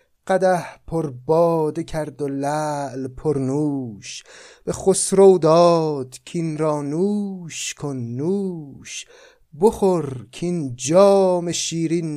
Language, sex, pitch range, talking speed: Persian, male, 120-165 Hz, 100 wpm